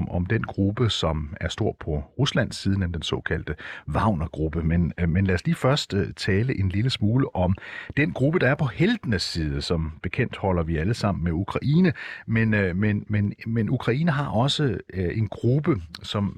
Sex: male